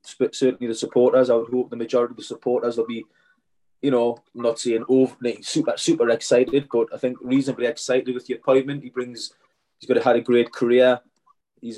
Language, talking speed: English, 200 wpm